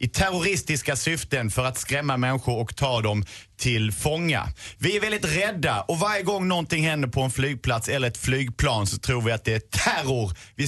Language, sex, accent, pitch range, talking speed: Swedish, male, native, 115-150 Hz, 195 wpm